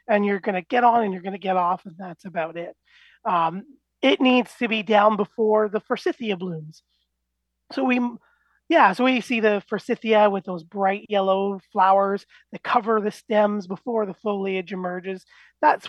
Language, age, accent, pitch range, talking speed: English, 30-49, American, 185-230 Hz, 180 wpm